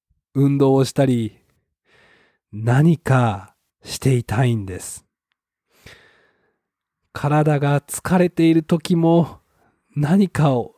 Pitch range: 110-160 Hz